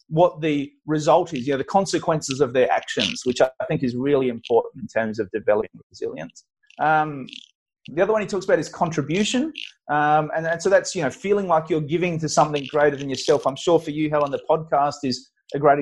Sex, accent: male, Australian